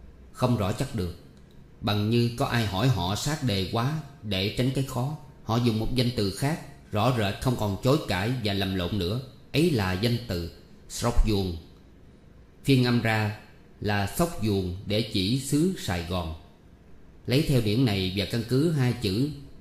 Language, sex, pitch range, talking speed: Vietnamese, male, 95-125 Hz, 180 wpm